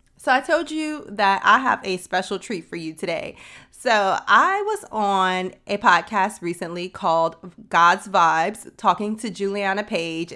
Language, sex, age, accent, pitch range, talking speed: English, female, 30-49, American, 180-235 Hz, 155 wpm